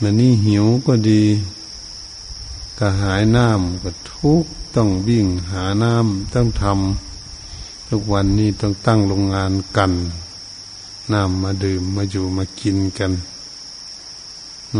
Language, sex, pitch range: Thai, male, 90-105 Hz